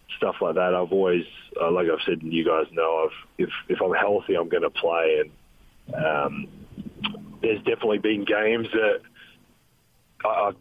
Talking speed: 175 wpm